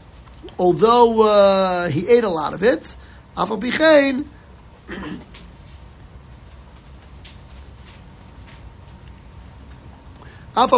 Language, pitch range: English, 190-240 Hz